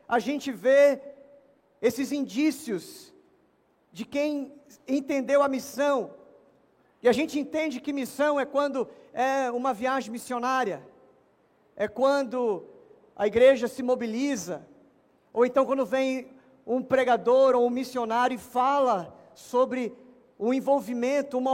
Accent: Brazilian